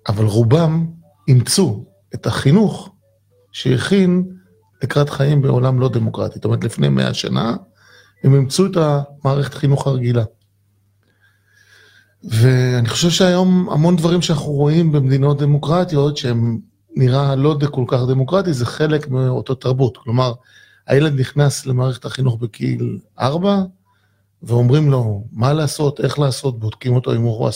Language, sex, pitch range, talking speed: Hebrew, male, 115-170 Hz, 130 wpm